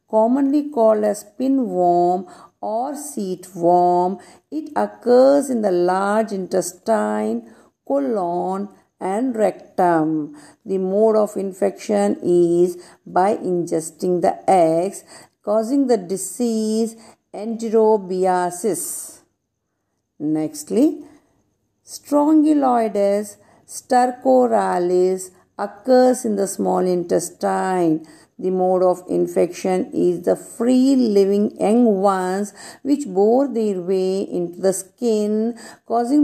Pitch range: 180-245 Hz